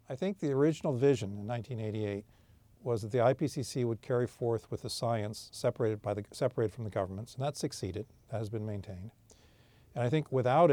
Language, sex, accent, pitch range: English, male, American, 105-125 Hz